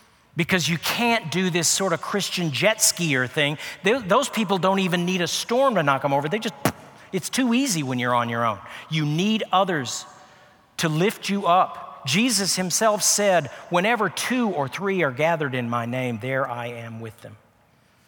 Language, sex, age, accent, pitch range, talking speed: English, male, 50-69, American, 135-185 Hz, 185 wpm